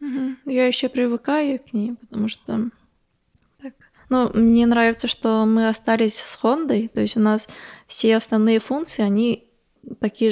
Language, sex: Russian, female